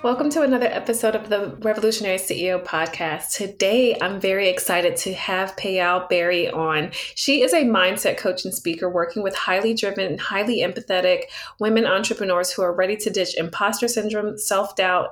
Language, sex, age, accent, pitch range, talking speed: English, female, 20-39, American, 185-235 Hz, 165 wpm